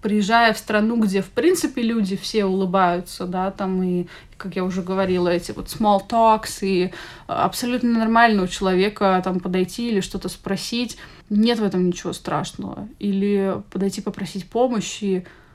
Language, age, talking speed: Russian, 20-39, 145 wpm